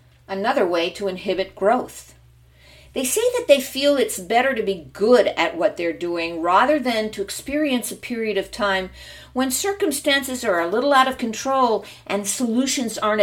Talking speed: 170 wpm